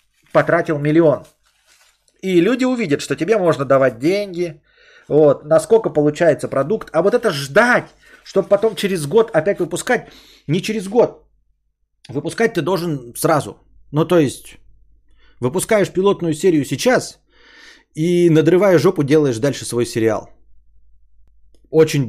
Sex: male